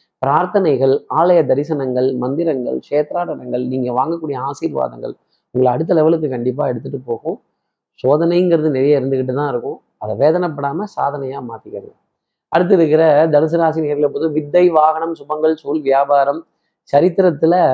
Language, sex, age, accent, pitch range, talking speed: Tamil, male, 20-39, native, 130-160 Hz, 110 wpm